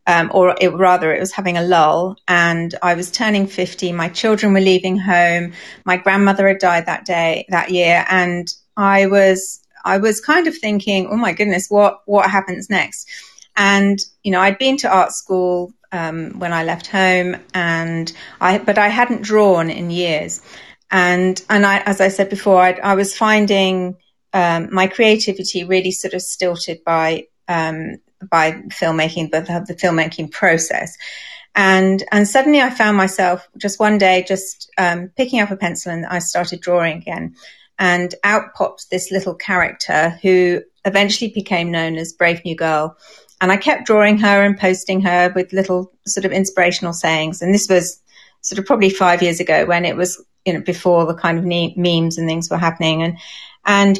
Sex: female